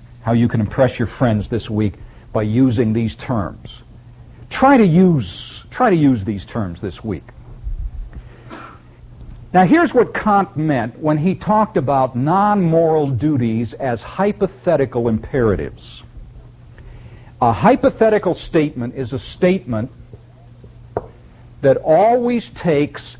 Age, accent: 60-79, American